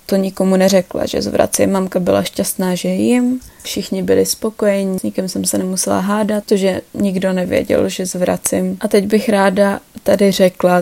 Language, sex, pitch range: Czech, female, 180-195 Hz